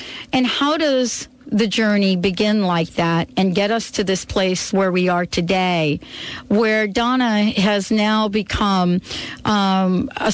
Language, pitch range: English, 180-230 Hz